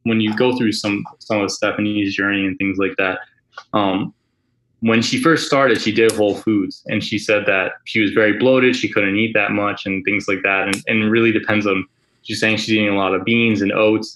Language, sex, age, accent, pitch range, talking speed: English, male, 20-39, American, 100-110 Hz, 235 wpm